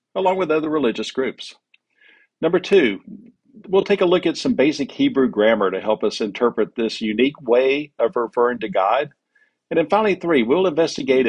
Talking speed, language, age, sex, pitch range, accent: 175 wpm, English, 50-69, male, 115-160 Hz, American